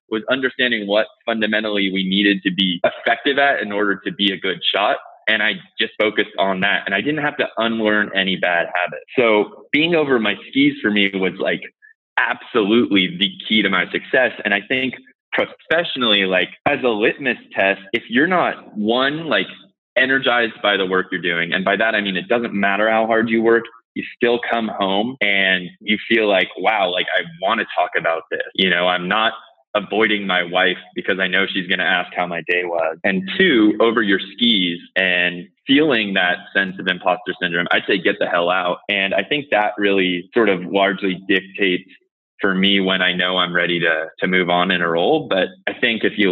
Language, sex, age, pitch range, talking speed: English, male, 20-39, 95-115 Hz, 205 wpm